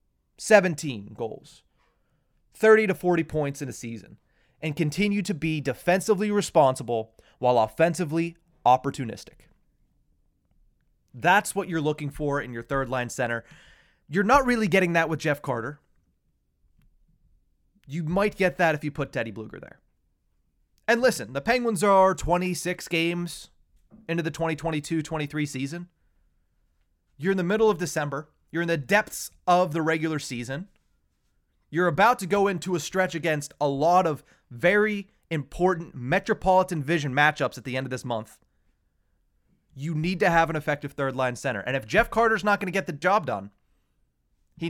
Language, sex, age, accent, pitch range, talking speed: English, male, 30-49, American, 135-180 Hz, 150 wpm